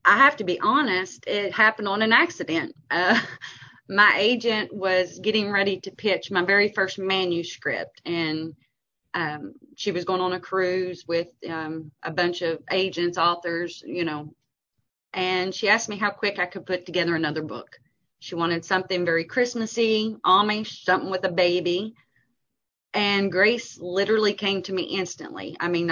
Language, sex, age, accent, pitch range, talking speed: English, female, 30-49, American, 170-205 Hz, 160 wpm